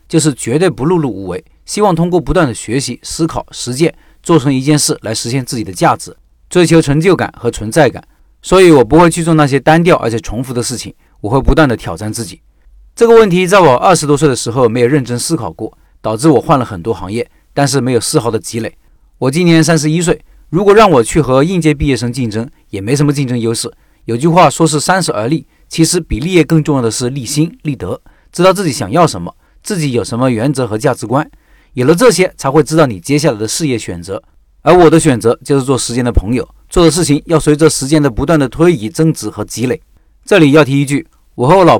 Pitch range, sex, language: 120-160 Hz, male, Chinese